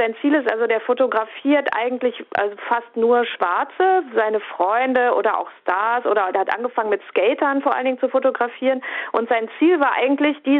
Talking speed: 185 wpm